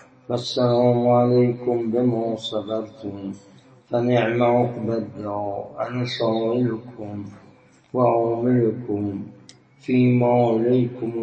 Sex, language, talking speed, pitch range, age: male, Persian, 60 wpm, 105-125 Hz, 60-79